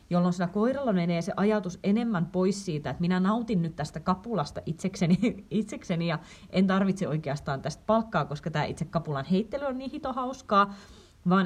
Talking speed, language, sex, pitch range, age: 175 wpm, Finnish, female, 155-200 Hz, 30-49